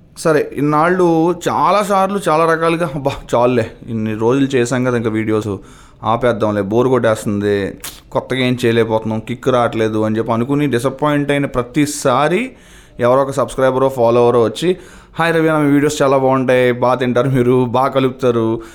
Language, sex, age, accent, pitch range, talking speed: Telugu, male, 20-39, native, 120-150 Hz, 135 wpm